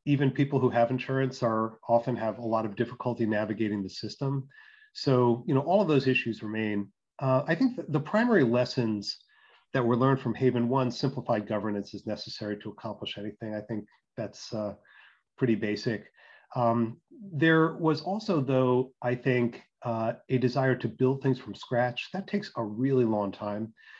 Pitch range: 110-130 Hz